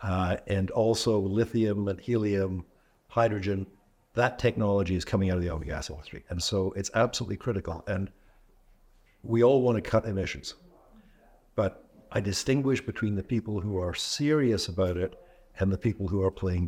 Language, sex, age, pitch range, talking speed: English, male, 60-79, 95-115 Hz, 165 wpm